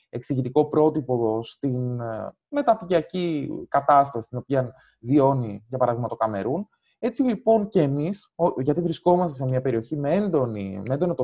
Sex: male